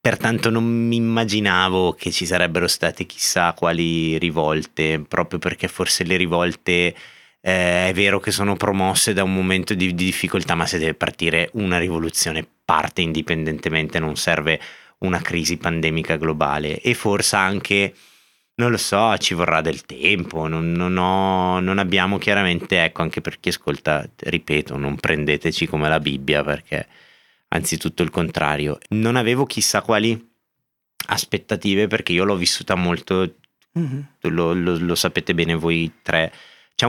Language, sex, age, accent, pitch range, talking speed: Italian, male, 30-49, native, 85-100 Hz, 145 wpm